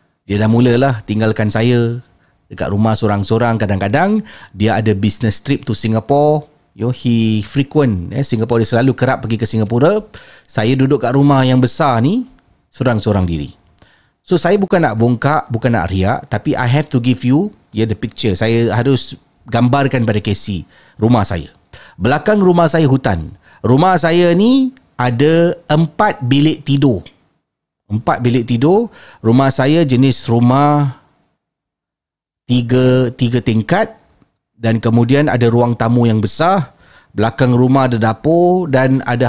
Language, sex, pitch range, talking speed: Malay, male, 110-145 Hz, 145 wpm